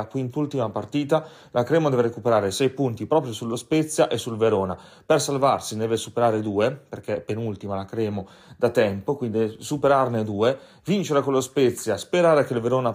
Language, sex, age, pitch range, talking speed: Italian, male, 30-49, 115-140 Hz, 175 wpm